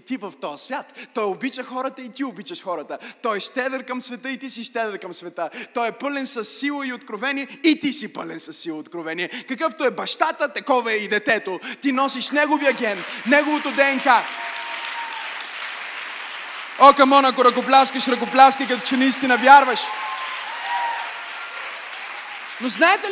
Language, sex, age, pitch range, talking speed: Bulgarian, male, 20-39, 255-325 Hz, 160 wpm